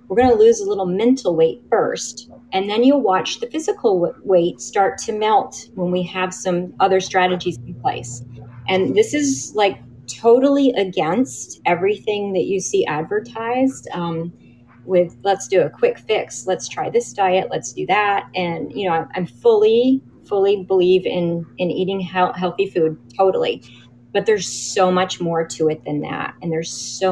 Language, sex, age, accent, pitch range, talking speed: English, female, 30-49, American, 160-220 Hz, 170 wpm